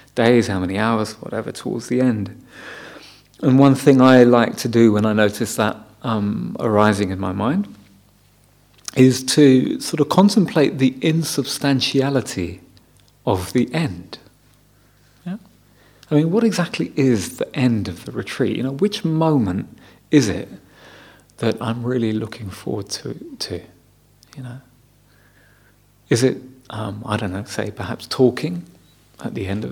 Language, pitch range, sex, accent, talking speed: English, 105-140 Hz, male, British, 145 wpm